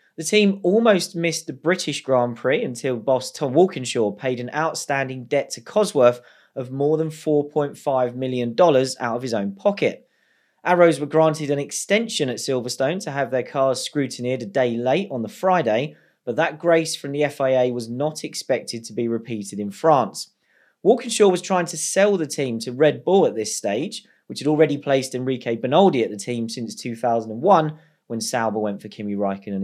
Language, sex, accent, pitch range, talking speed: English, male, British, 120-165 Hz, 180 wpm